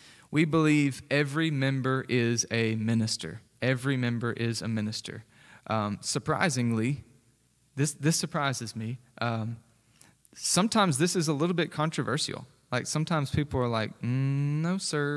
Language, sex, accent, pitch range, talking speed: English, male, American, 115-145 Hz, 135 wpm